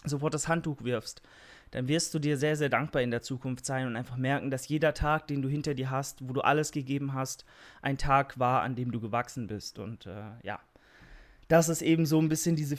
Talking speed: 230 wpm